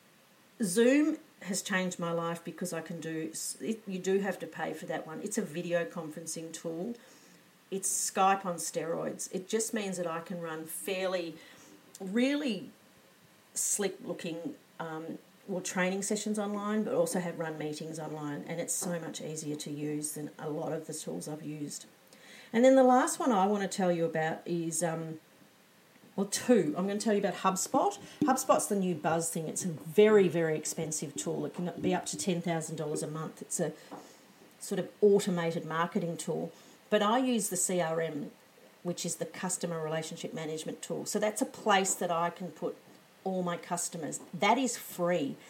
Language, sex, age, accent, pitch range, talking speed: English, female, 40-59, Australian, 165-210 Hz, 180 wpm